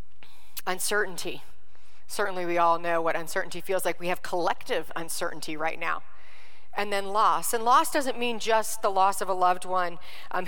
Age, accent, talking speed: 40-59, American, 170 wpm